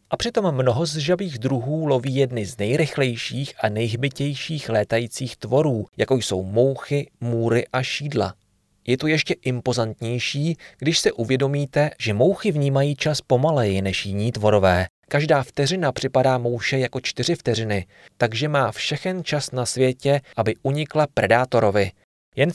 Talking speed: 140 wpm